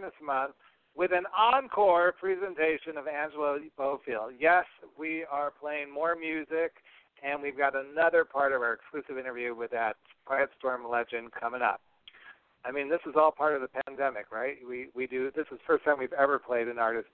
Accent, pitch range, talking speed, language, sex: American, 125-155 Hz, 190 wpm, English, male